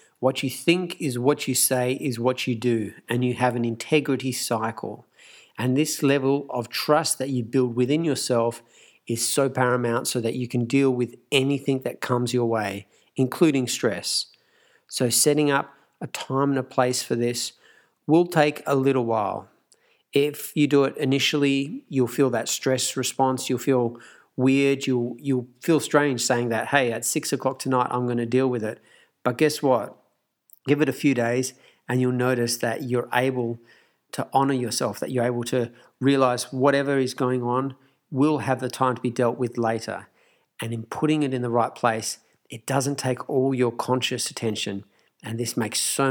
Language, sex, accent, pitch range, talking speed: English, male, Australian, 120-140 Hz, 185 wpm